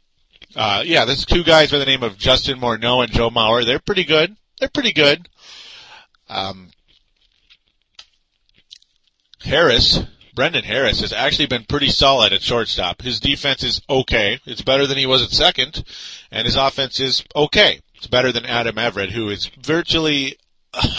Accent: American